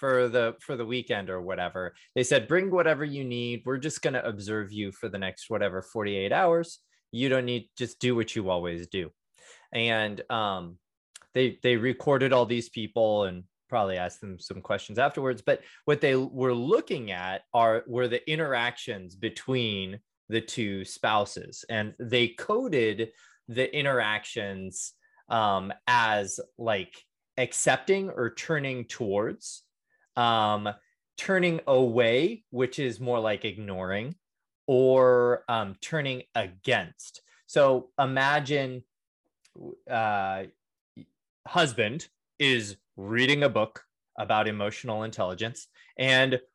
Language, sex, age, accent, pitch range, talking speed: English, male, 20-39, American, 110-145 Hz, 130 wpm